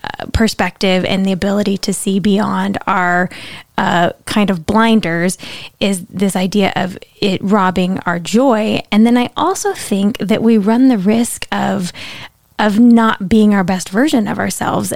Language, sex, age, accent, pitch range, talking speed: English, female, 10-29, American, 190-225 Hz, 155 wpm